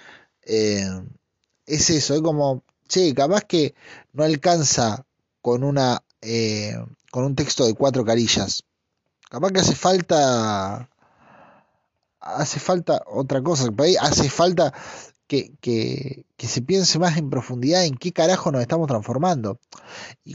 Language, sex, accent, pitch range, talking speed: Spanish, male, Argentinian, 125-170 Hz, 130 wpm